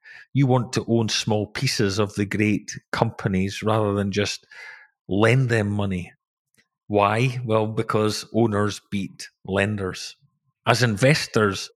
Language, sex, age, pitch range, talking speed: English, male, 40-59, 100-115 Hz, 120 wpm